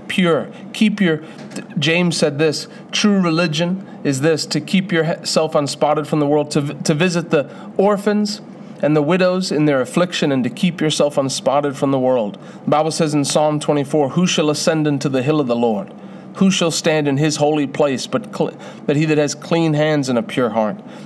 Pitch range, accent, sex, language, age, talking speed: 145-195 Hz, American, male, English, 40-59, 200 wpm